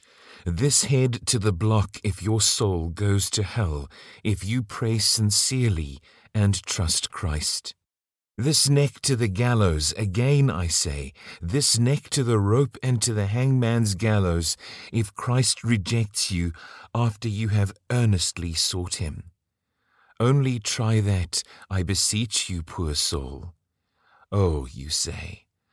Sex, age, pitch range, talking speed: male, 40-59, 90-115 Hz, 135 wpm